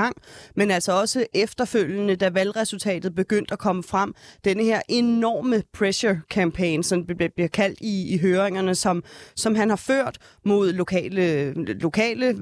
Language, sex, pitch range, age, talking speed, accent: Danish, female, 180-215 Hz, 30-49, 140 wpm, native